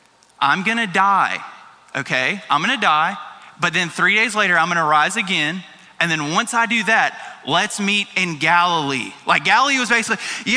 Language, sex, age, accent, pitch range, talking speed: English, male, 20-39, American, 195-235 Hz, 175 wpm